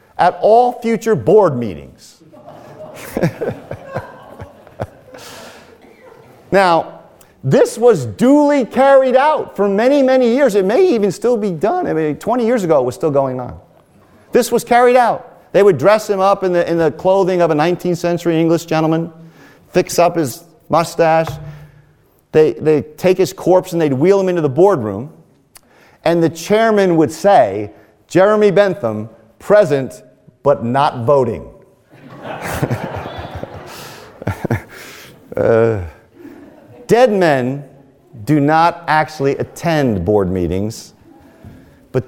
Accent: American